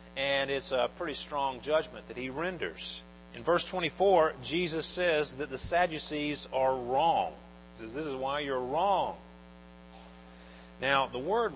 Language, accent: English, American